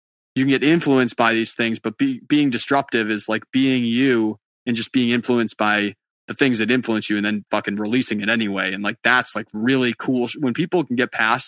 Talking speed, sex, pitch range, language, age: 215 wpm, male, 110-130 Hz, English, 20-39